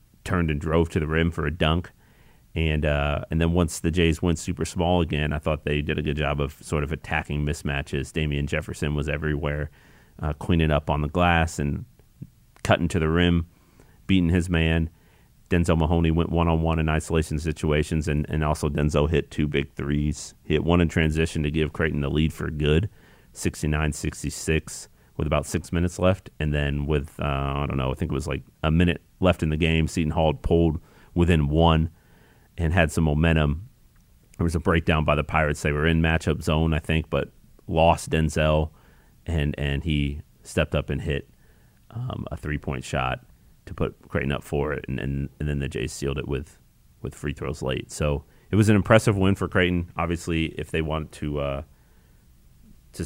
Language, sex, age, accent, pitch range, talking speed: English, male, 40-59, American, 75-85 Hz, 195 wpm